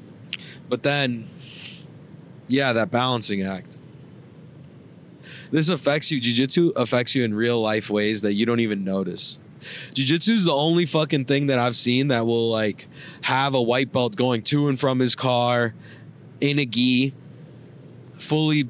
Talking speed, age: 155 wpm, 20-39